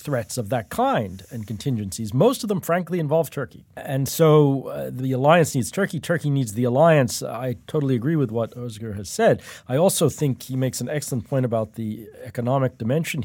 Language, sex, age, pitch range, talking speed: English, male, 40-59, 115-150 Hz, 195 wpm